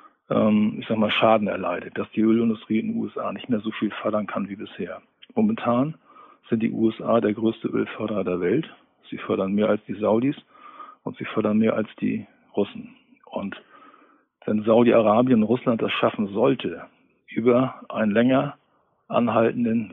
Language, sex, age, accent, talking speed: German, male, 50-69, German, 160 wpm